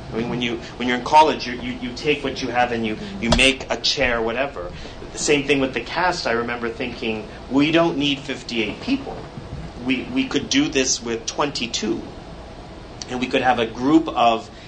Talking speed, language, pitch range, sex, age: 200 wpm, English, 115-135 Hz, male, 30-49